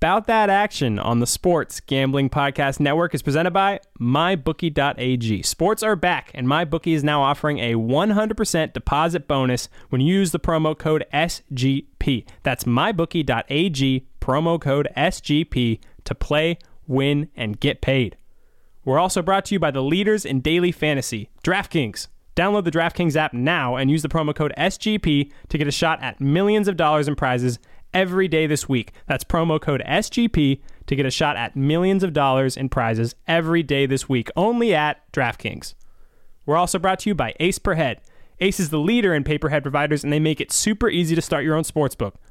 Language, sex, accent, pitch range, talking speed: English, male, American, 135-175 Hz, 180 wpm